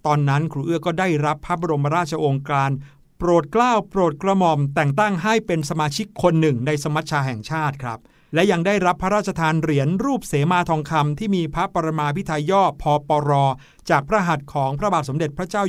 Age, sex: 60-79, male